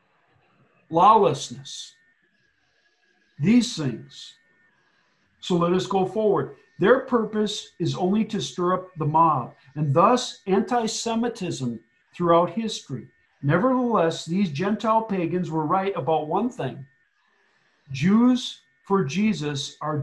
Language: English